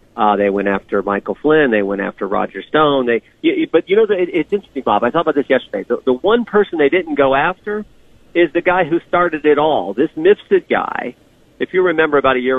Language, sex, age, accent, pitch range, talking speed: English, male, 50-69, American, 130-170 Hz, 240 wpm